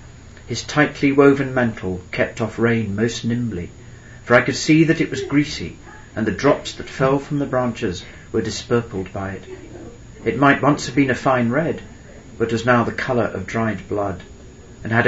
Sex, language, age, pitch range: male, English, 40-59, 100-120 Hz